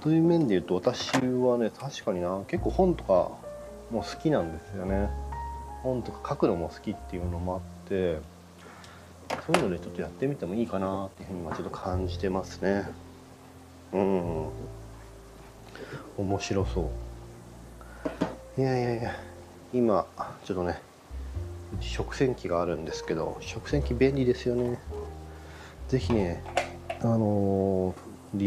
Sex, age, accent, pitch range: male, 40-59, native, 85-120 Hz